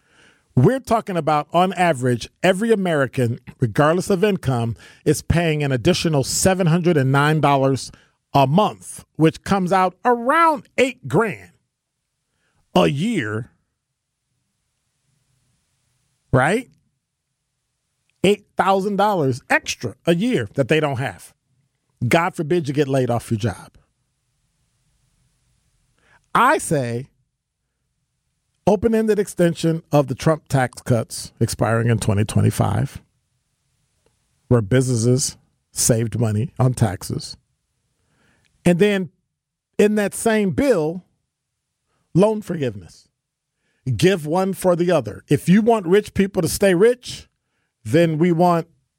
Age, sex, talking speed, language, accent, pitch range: 40-59, male, 105 wpm, English, American, 130-180 Hz